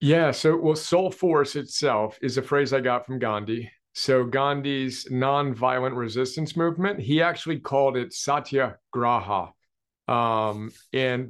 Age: 40-59